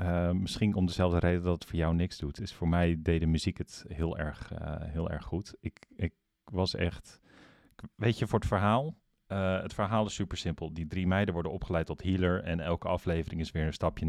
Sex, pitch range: male, 80-95 Hz